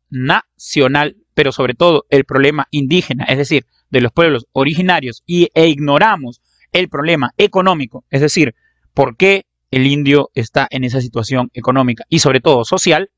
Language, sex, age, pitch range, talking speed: Spanish, male, 30-49, 130-155 Hz, 150 wpm